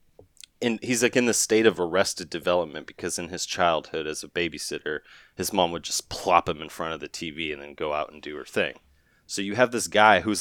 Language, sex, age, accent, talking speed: English, male, 30-49, American, 235 wpm